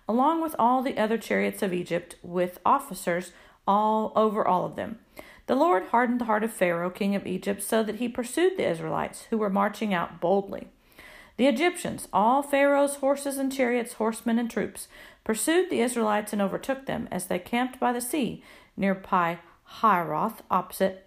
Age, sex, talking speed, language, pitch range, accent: 40-59, female, 175 wpm, English, 195-270 Hz, American